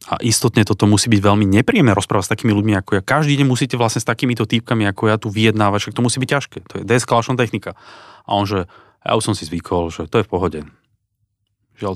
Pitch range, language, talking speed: 105-135 Hz, Slovak, 230 wpm